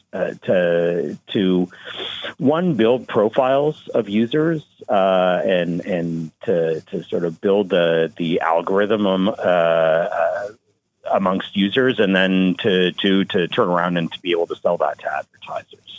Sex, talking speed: male, 145 wpm